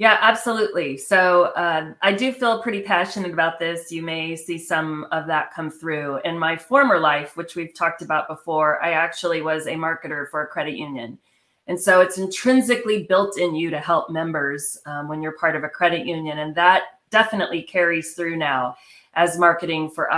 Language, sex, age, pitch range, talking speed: English, female, 30-49, 165-210 Hz, 190 wpm